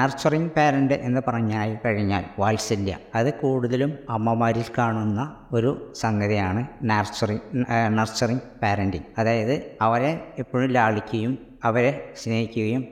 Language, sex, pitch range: Malayalam, female, 110-135 Hz